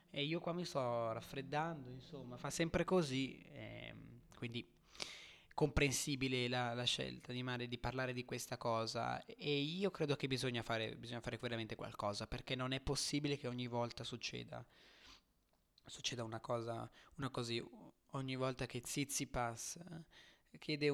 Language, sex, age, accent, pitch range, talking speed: Italian, male, 20-39, native, 120-150 Hz, 150 wpm